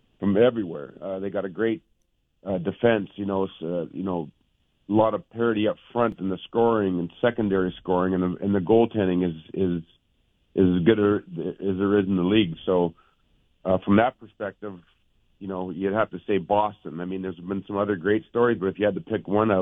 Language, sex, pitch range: English, male, 90-105 Hz